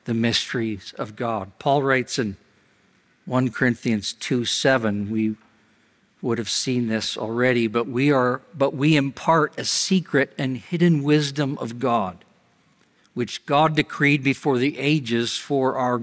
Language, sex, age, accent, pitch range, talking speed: English, male, 50-69, American, 125-160 Hz, 140 wpm